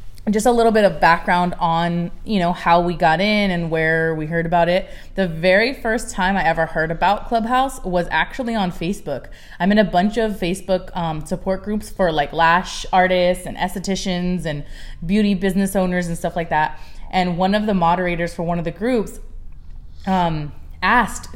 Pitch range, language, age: 165-200 Hz, English, 20-39